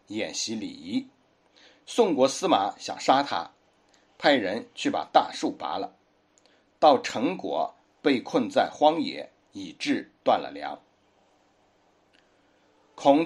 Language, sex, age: Chinese, male, 60-79